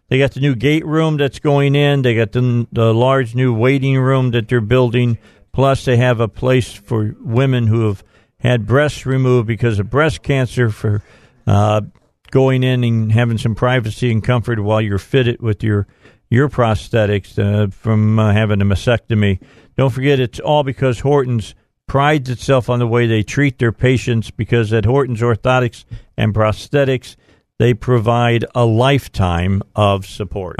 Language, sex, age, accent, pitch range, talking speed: English, male, 50-69, American, 105-130 Hz, 170 wpm